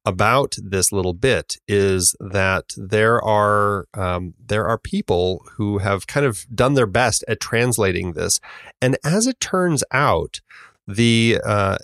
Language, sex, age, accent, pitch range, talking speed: English, male, 30-49, American, 95-120 Hz, 145 wpm